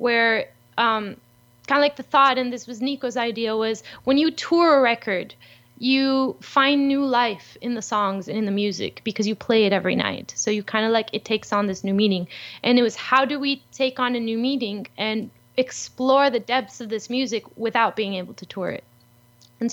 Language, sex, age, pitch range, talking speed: English, female, 10-29, 200-255 Hz, 215 wpm